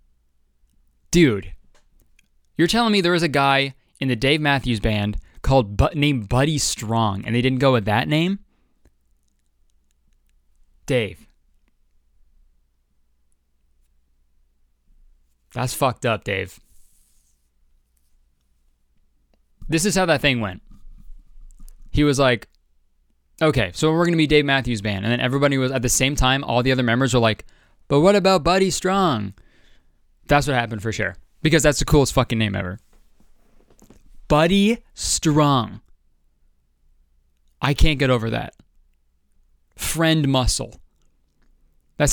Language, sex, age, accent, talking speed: English, male, 20-39, American, 125 wpm